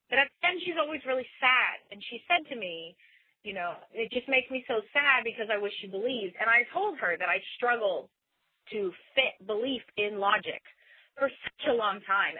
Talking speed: 210 wpm